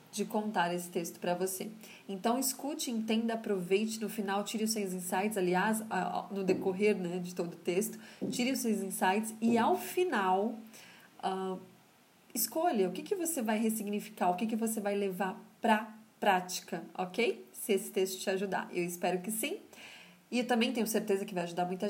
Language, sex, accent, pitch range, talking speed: Portuguese, female, Brazilian, 190-235 Hz, 180 wpm